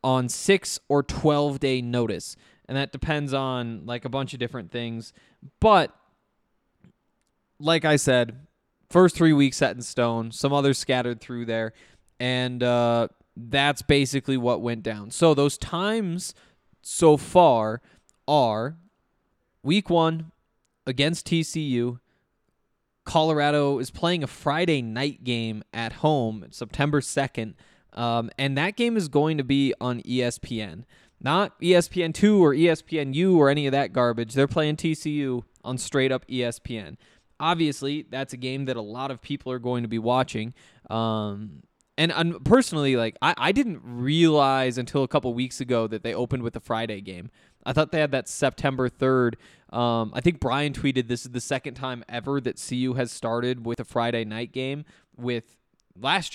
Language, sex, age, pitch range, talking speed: English, male, 20-39, 120-150 Hz, 160 wpm